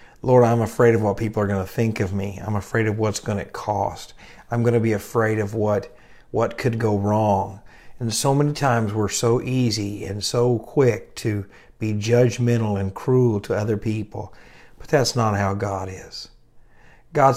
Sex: male